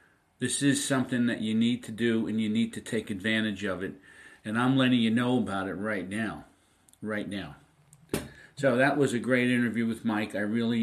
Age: 50-69